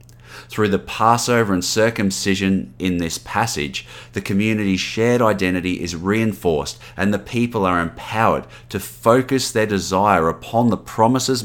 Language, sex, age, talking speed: English, male, 30-49, 135 wpm